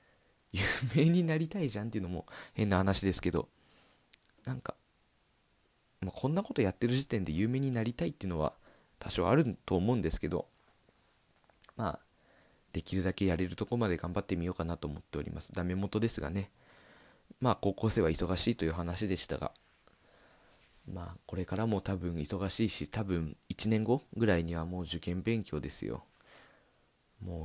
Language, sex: Japanese, male